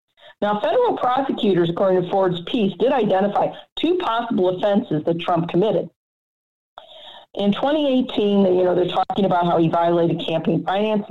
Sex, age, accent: female, 50-69, American